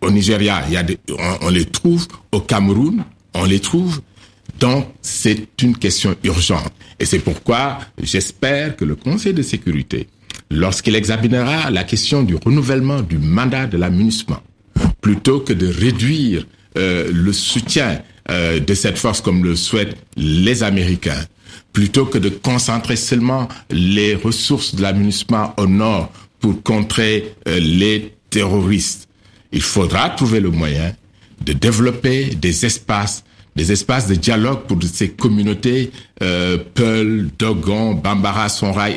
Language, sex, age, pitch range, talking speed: French, male, 60-79, 95-115 Hz, 140 wpm